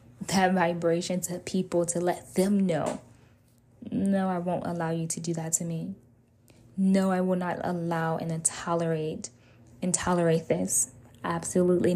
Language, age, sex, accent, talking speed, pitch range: English, 10-29, female, American, 140 wpm, 120-180 Hz